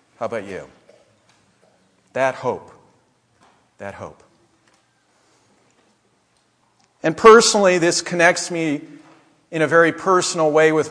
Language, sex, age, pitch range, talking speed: English, male, 50-69, 135-190 Hz, 100 wpm